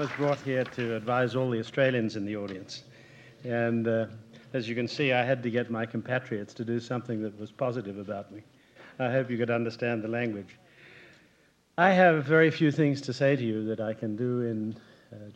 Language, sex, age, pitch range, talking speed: English, male, 50-69, 115-140 Hz, 210 wpm